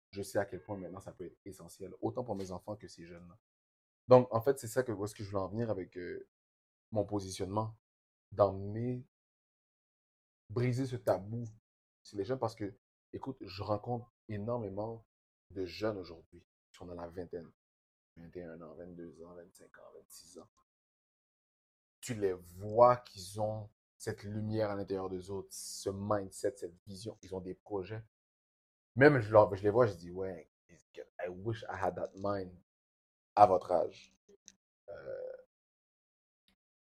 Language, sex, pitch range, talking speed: French, male, 90-115 Hz, 160 wpm